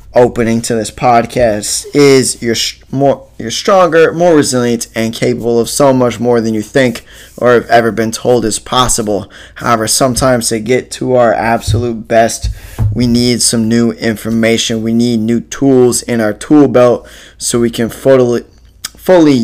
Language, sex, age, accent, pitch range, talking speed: English, male, 10-29, American, 110-125 Hz, 165 wpm